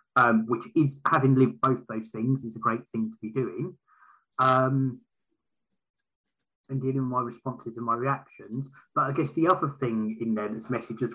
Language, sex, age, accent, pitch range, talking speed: English, male, 30-49, British, 115-140 Hz, 190 wpm